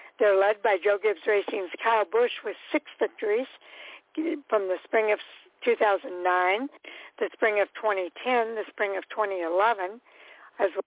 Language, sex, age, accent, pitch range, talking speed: English, female, 60-79, American, 195-250 Hz, 135 wpm